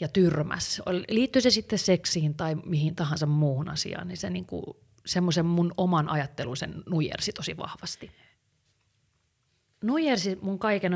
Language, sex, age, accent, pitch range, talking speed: Finnish, female, 30-49, native, 150-185 Hz, 135 wpm